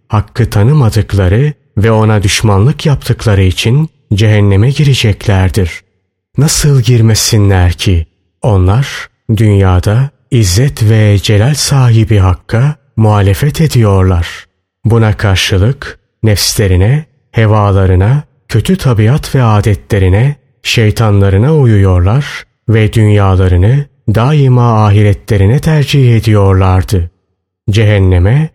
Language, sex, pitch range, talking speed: Turkish, male, 95-130 Hz, 80 wpm